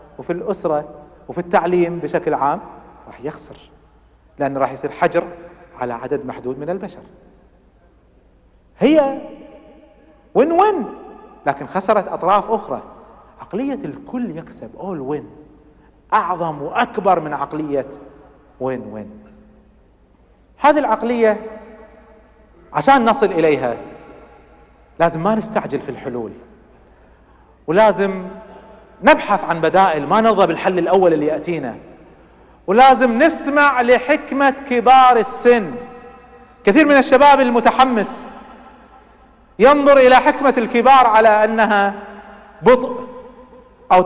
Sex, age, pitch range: male, 40-59, 165-250 Hz